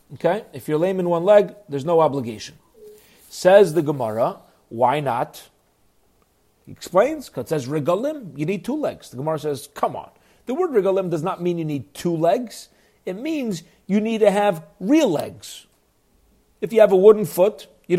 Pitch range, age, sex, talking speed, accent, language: 145-195 Hz, 40-59, male, 185 wpm, American, English